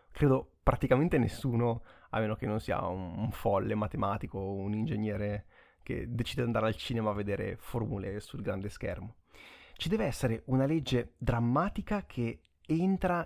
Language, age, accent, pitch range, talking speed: Italian, 30-49, native, 105-140 Hz, 160 wpm